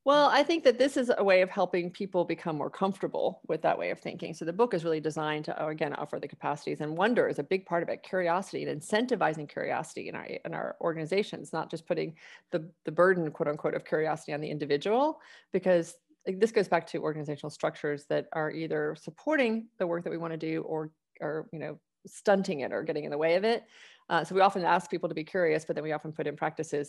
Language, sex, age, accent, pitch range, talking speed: English, female, 30-49, American, 155-200 Hz, 245 wpm